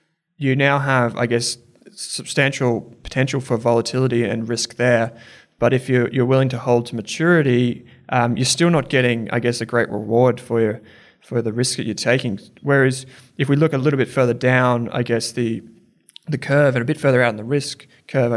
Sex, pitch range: male, 120-145 Hz